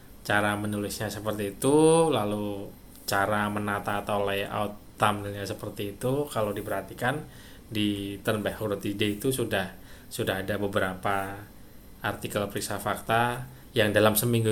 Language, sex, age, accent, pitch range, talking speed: Indonesian, male, 20-39, native, 100-115 Hz, 115 wpm